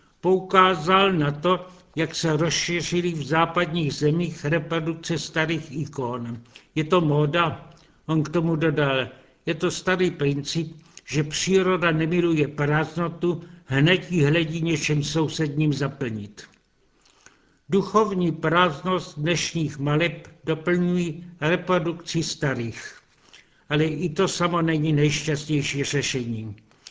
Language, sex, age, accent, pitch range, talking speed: Czech, male, 70-89, native, 145-170 Hz, 105 wpm